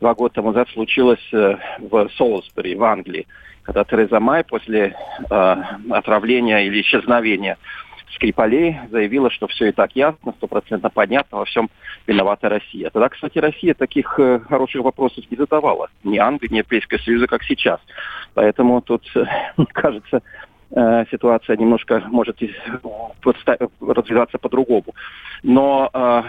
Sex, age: male, 40-59